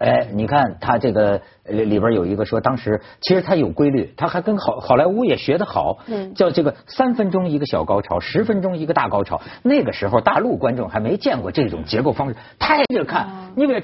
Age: 50-69